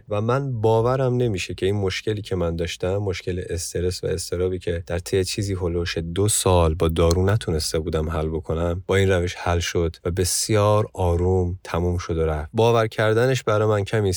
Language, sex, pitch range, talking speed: Persian, male, 90-115 Hz, 185 wpm